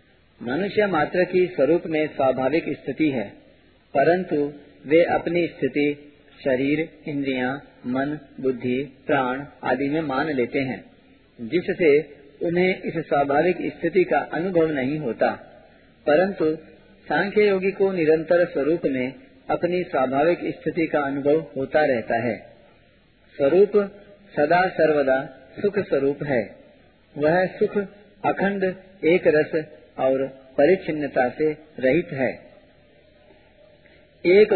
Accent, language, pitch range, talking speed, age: native, Hindi, 140-185 Hz, 110 wpm, 40-59